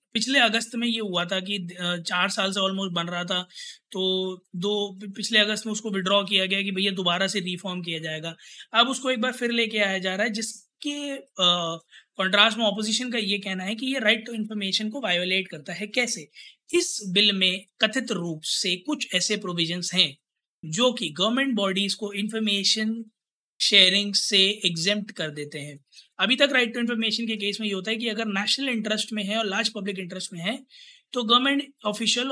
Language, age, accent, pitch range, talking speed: Hindi, 20-39, native, 190-230 Hz, 200 wpm